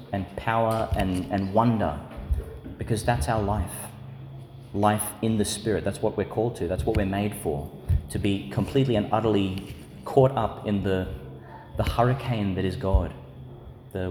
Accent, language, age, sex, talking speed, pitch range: Australian, English, 30-49, male, 160 wpm, 90-115 Hz